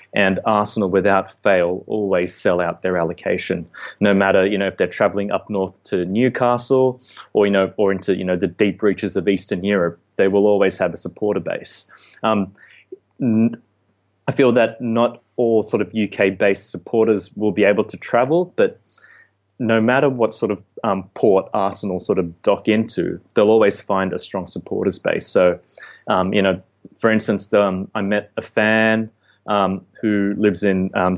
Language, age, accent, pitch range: English, 20-39, Australian, 95-110 Hz